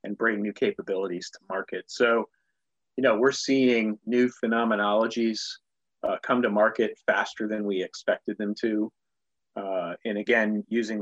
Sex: male